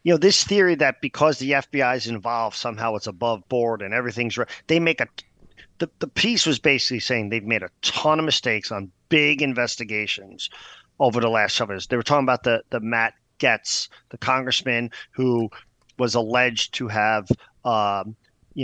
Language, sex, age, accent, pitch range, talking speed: English, male, 40-59, American, 110-130 Hz, 180 wpm